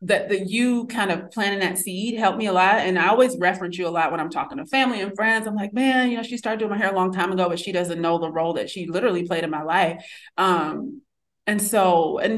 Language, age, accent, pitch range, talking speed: English, 30-49, American, 165-205 Hz, 275 wpm